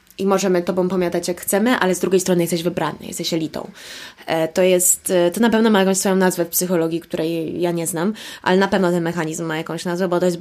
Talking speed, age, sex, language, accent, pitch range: 230 wpm, 20-39, female, Polish, native, 175-210 Hz